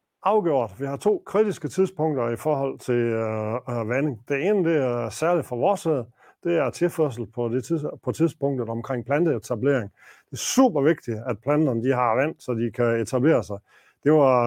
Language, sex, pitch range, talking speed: Danish, male, 120-165 Hz, 180 wpm